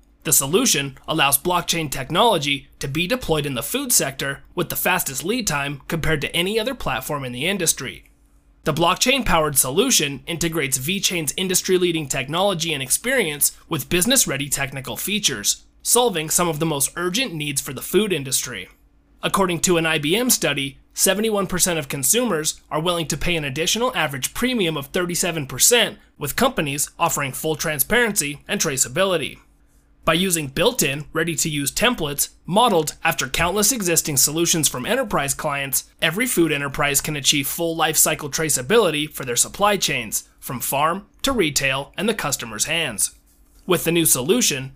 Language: English